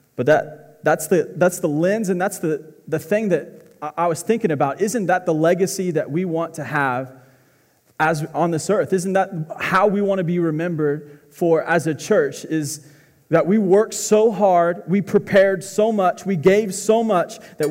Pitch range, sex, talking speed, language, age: 150-185 Hz, male, 195 wpm, English, 20-39